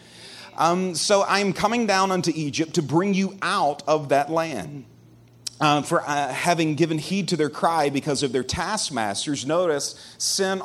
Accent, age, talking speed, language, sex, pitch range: American, 40-59, 165 wpm, English, male, 150-230 Hz